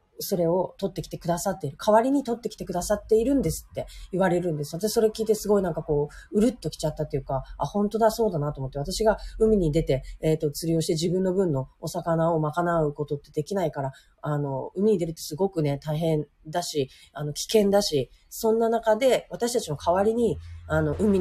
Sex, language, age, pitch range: female, Japanese, 30-49, 150-195 Hz